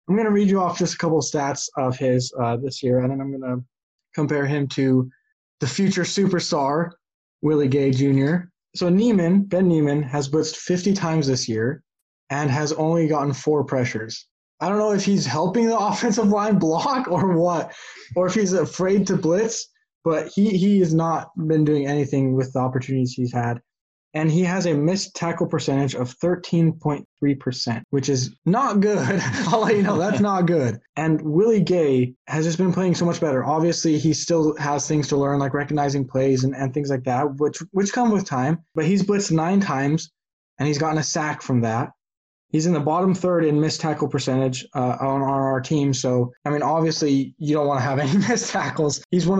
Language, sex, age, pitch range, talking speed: English, male, 20-39, 140-180 Hz, 205 wpm